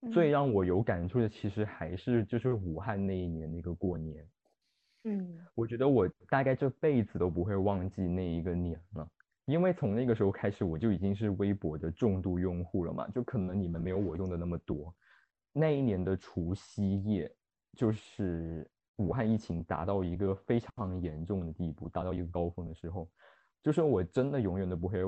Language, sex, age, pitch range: Chinese, male, 20-39, 85-115 Hz